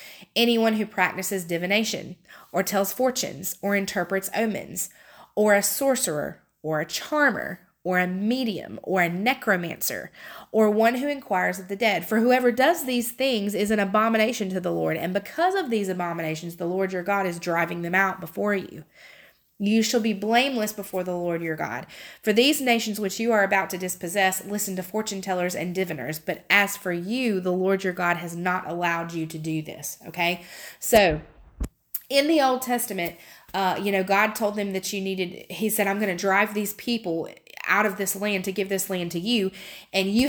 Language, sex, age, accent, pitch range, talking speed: English, female, 30-49, American, 180-215 Hz, 190 wpm